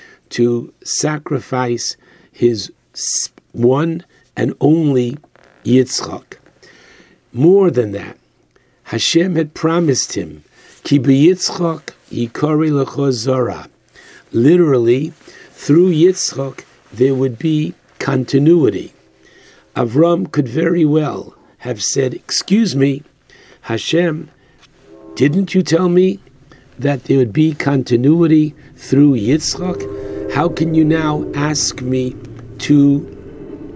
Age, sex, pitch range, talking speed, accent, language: 60-79, male, 125-170 Hz, 90 wpm, American, English